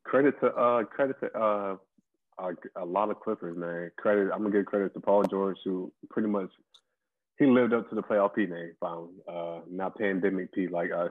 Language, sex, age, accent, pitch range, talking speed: English, male, 20-39, American, 90-105 Hz, 205 wpm